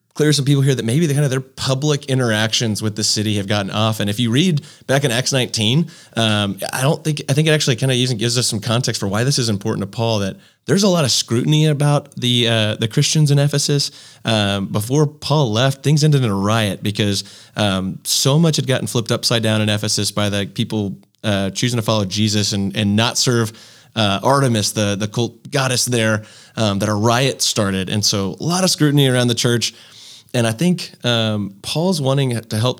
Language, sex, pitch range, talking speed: English, male, 105-135 Hz, 225 wpm